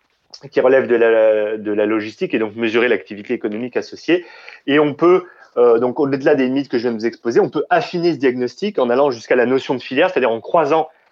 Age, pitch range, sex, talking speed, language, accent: 30-49, 110-170 Hz, male, 225 wpm, French, French